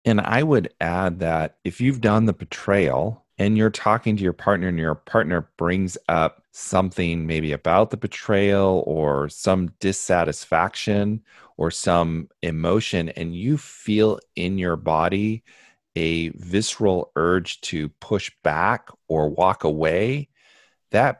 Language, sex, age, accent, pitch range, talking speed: English, male, 40-59, American, 85-105 Hz, 135 wpm